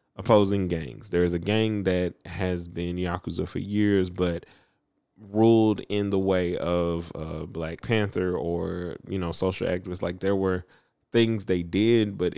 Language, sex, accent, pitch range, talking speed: English, male, American, 85-105 Hz, 160 wpm